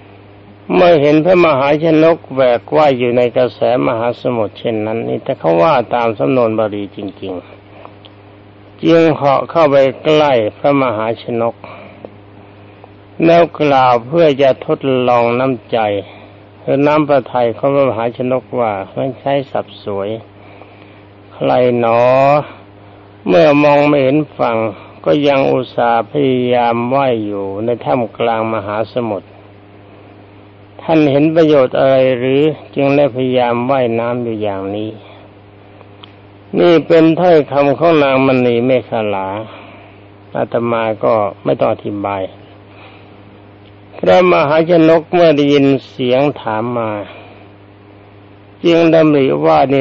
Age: 60-79